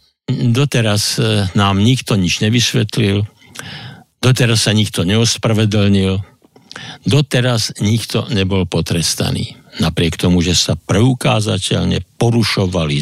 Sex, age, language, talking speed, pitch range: male, 50-69, Slovak, 90 wpm, 95-115 Hz